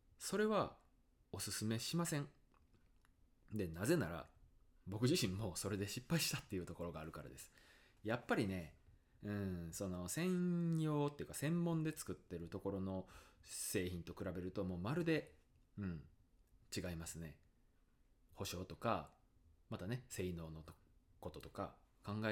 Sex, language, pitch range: male, Japanese, 85-140 Hz